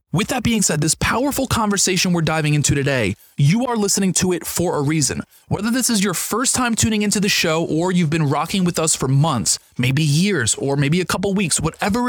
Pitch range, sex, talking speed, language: 145-200 Hz, male, 225 wpm, English